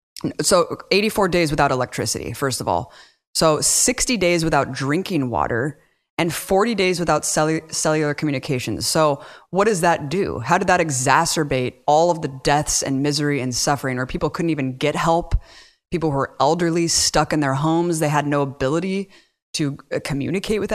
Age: 20-39